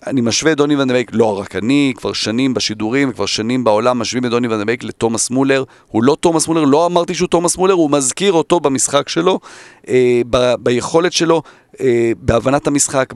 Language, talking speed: Hebrew, 175 wpm